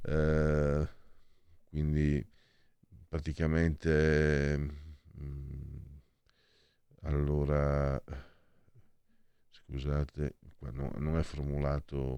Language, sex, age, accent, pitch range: Italian, male, 50-69, native, 75-105 Hz